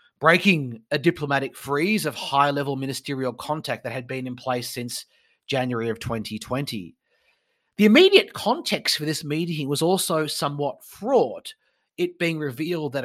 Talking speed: 145 wpm